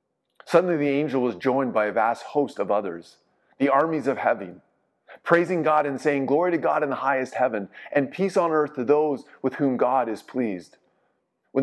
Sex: male